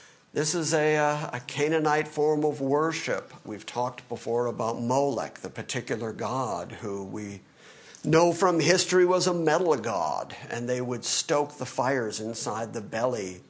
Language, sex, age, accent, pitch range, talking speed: English, male, 50-69, American, 115-155 Hz, 150 wpm